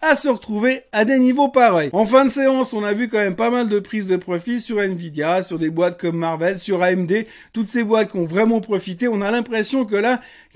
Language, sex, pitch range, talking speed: French, male, 190-235 Hz, 250 wpm